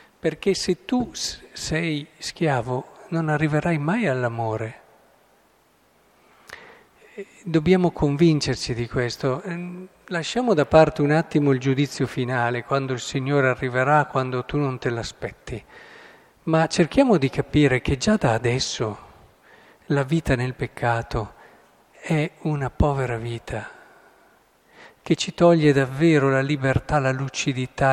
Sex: male